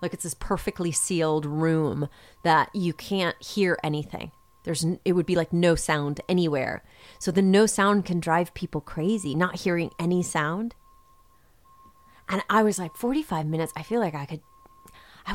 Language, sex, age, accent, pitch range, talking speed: English, female, 30-49, American, 150-200 Hz, 170 wpm